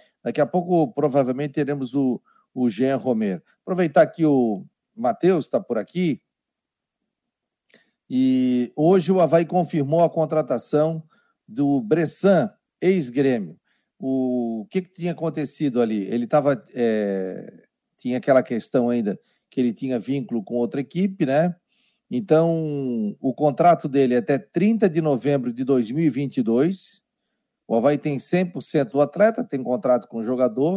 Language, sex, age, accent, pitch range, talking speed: Portuguese, male, 40-59, Brazilian, 130-170 Hz, 135 wpm